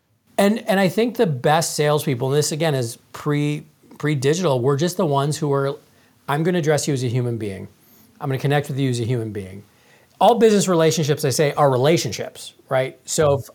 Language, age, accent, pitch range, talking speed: English, 40-59, American, 130-185 Hz, 215 wpm